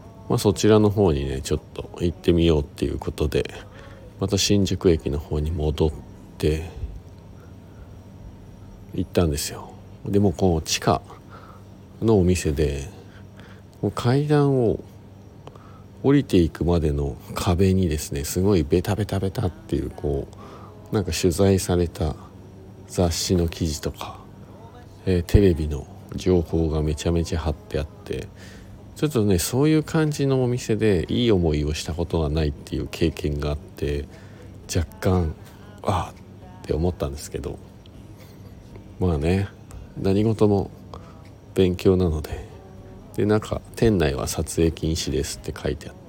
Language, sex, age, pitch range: Japanese, male, 50-69, 85-100 Hz